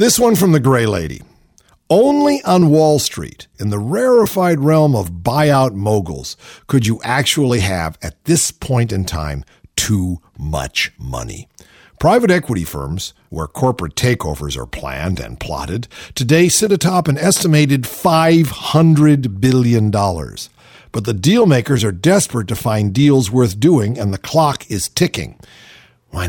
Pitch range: 95-140 Hz